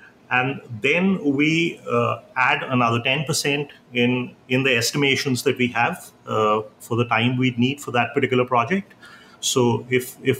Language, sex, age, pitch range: English, male, 30-49, 120-145 Hz